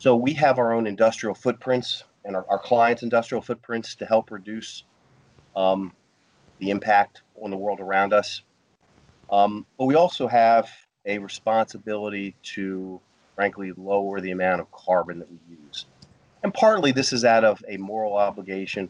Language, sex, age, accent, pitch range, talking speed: English, male, 40-59, American, 95-110 Hz, 160 wpm